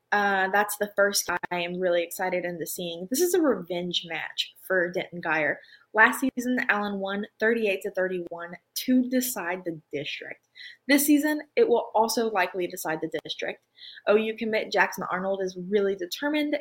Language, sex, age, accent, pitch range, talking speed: English, female, 20-39, American, 185-220 Hz, 165 wpm